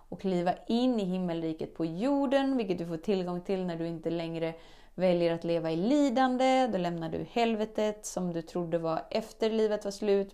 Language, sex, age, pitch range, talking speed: Swedish, female, 30-49, 165-225 Hz, 190 wpm